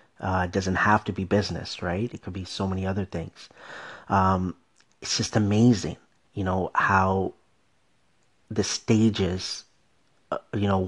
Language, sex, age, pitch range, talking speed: English, male, 40-59, 95-105 Hz, 150 wpm